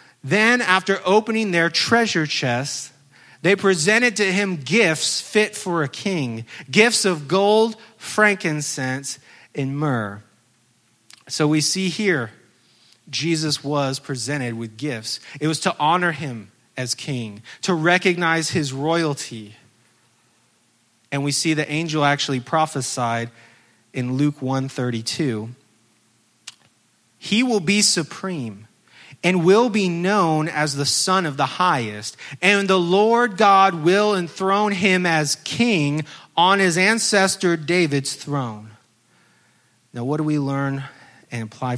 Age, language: 30-49, English